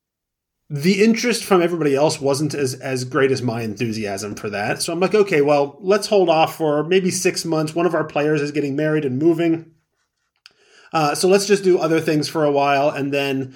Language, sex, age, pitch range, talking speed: English, male, 30-49, 130-155 Hz, 210 wpm